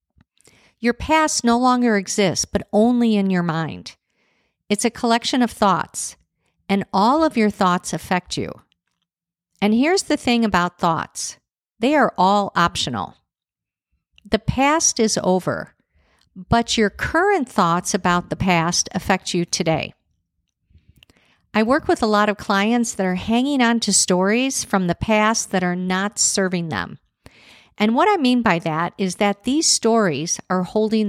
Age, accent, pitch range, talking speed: 50-69, American, 185-235 Hz, 150 wpm